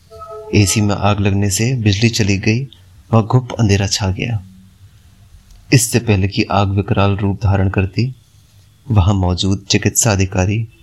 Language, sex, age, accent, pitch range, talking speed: Hindi, male, 30-49, native, 95-105 Hz, 140 wpm